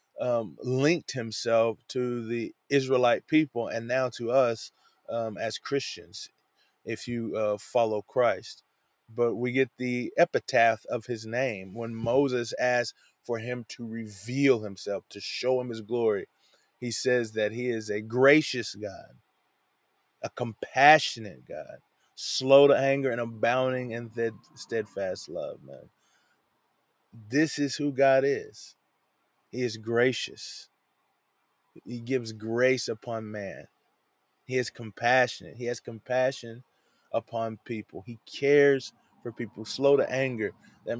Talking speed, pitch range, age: 130 wpm, 115-130 Hz, 20-39